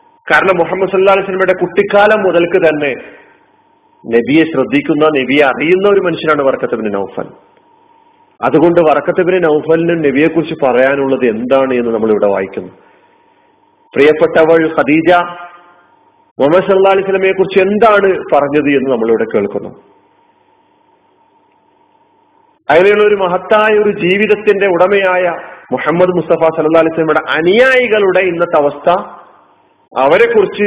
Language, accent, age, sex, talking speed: Malayalam, native, 40-59, male, 95 wpm